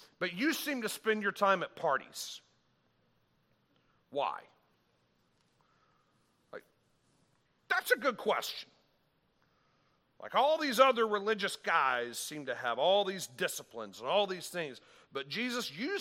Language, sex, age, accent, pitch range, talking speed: English, male, 40-59, American, 180-250 Hz, 125 wpm